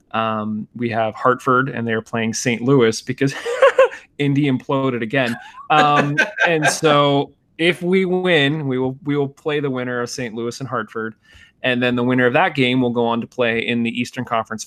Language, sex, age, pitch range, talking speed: English, male, 20-39, 120-150 Hz, 190 wpm